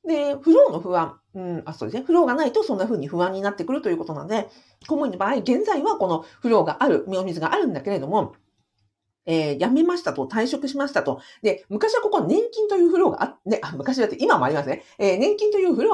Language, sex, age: Japanese, female, 50-69